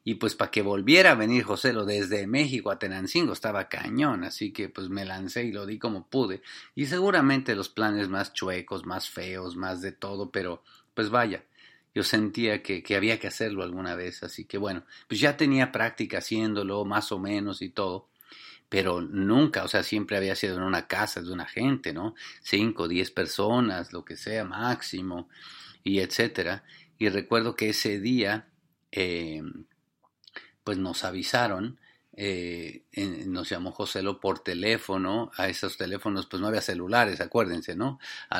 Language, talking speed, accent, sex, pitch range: English, 170 wpm, Mexican, male, 95-110 Hz